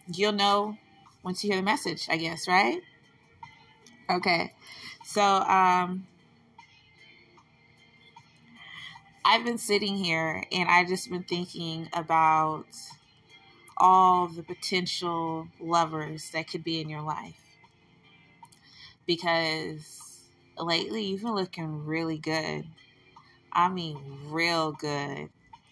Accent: American